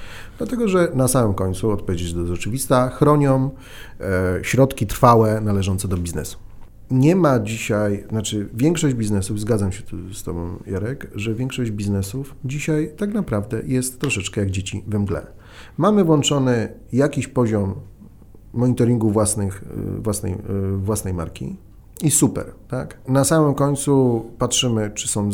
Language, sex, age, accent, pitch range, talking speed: Polish, male, 40-59, native, 100-130 Hz, 135 wpm